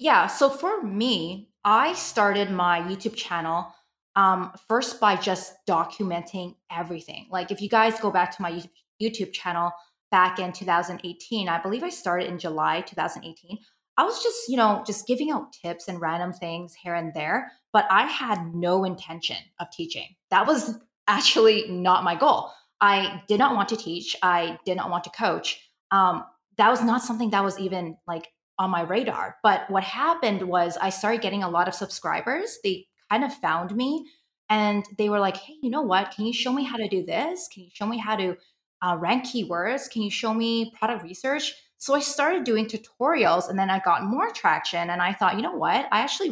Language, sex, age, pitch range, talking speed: English, female, 20-39, 180-225 Hz, 200 wpm